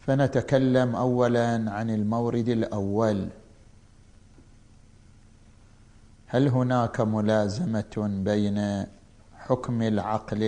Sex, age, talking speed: male, 50-69, 65 wpm